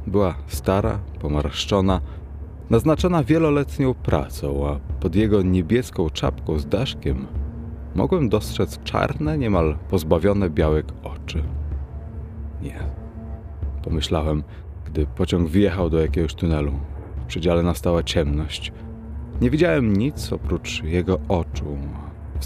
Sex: male